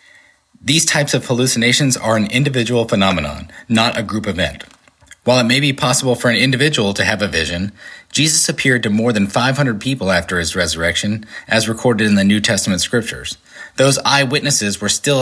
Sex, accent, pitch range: male, American, 100-135 Hz